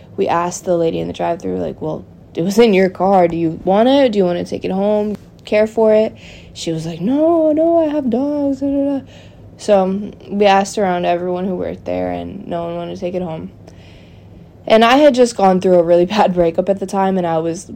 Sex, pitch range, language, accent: female, 165-195 Hz, English, American